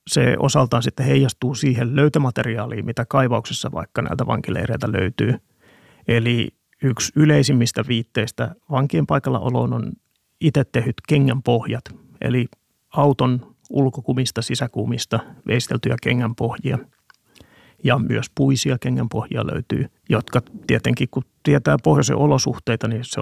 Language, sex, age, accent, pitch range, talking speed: Finnish, male, 30-49, native, 115-135 Hz, 110 wpm